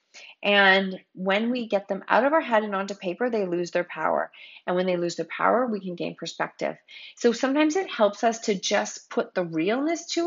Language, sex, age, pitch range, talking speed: English, female, 30-49, 180-235 Hz, 215 wpm